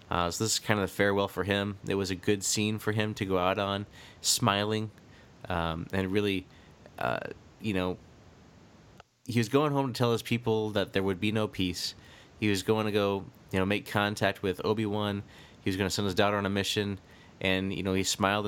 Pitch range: 95-120 Hz